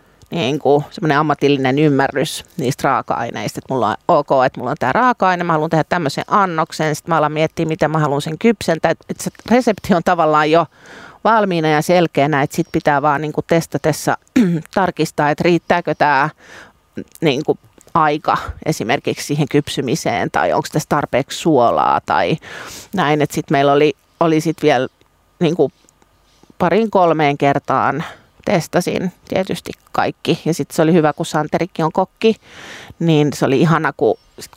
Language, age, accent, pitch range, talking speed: Finnish, 30-49, native, 150-180 Hz, 155 wpm